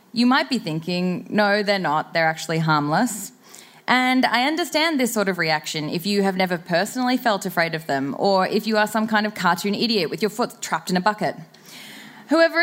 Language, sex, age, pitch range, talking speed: English, female, 10-29, 200-275 Hz, 205 wpm